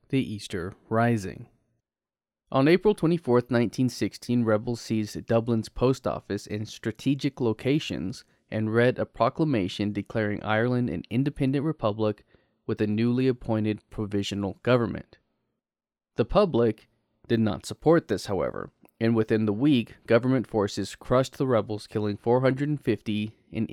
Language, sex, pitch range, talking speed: English, male, 105-125 Hz, 125 wpm